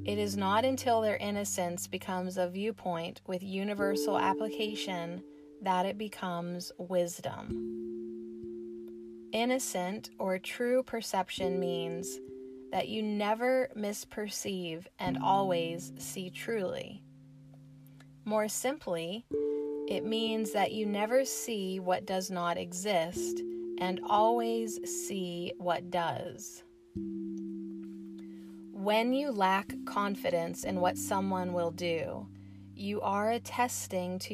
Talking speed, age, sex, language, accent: 105 wpm, 30-49, female, English, American